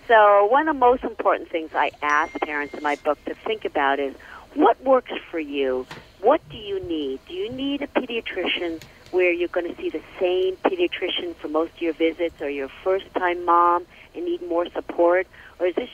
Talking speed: 205 wpm